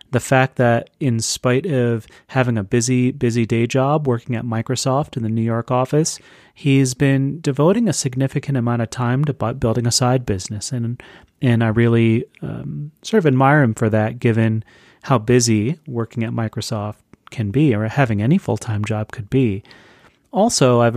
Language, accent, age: English, American, 30-49